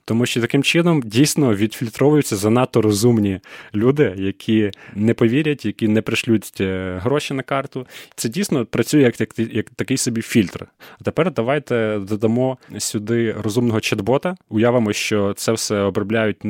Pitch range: 105-130 Hz